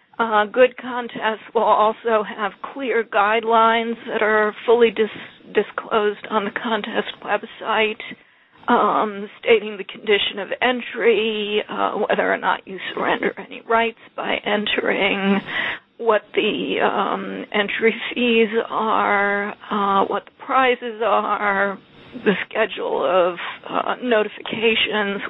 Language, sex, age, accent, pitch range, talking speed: English, female, 50-69, American, 210-240 Hz, 115 wpm